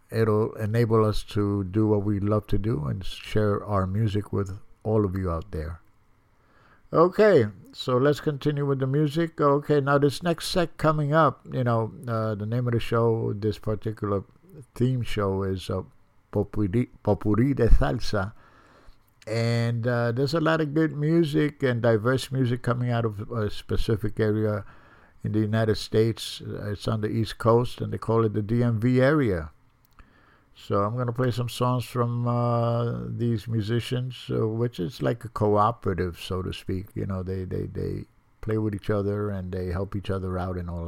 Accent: American